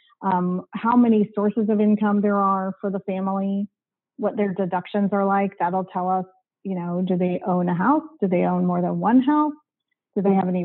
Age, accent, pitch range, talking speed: 30-49, American, 185-225 Hz, 210 wpm